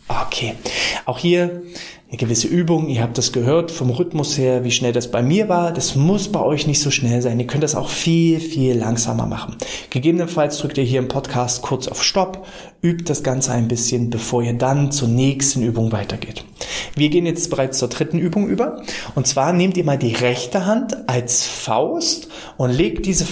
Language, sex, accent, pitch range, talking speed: German, male, German, 125-170 Hz, 200 wpm